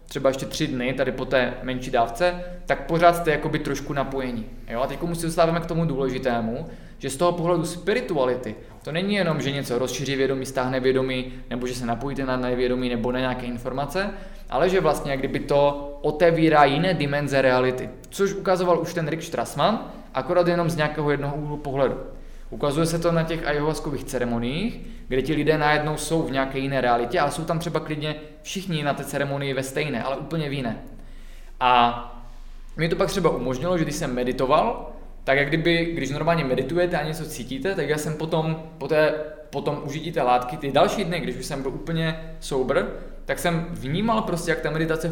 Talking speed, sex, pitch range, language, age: 190 wpm, male, 135-165 Hz, Czech, 20-39